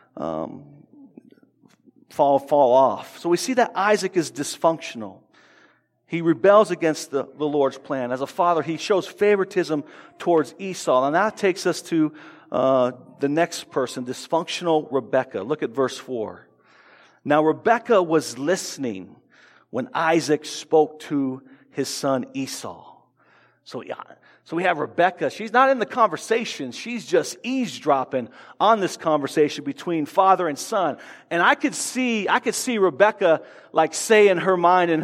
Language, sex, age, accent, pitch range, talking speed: English, male, 50-69, American, 155-210 Hz, 150 wpm